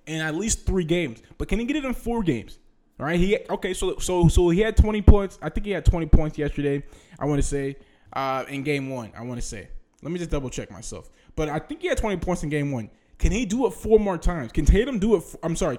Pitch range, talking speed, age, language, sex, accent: 125-185 Hz, 280 wpm, 20-39, English, male, American